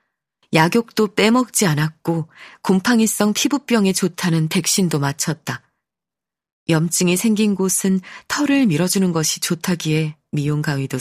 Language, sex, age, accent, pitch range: Korean, female, 20-39, native, 160-215 Hz